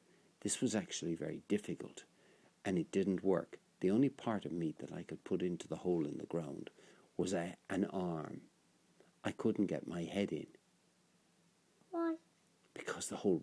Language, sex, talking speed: English, male, 165 wpm